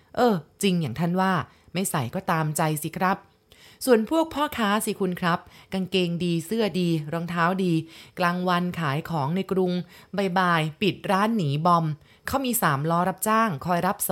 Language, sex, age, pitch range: Thai, female, 20-39, 160-200 Hz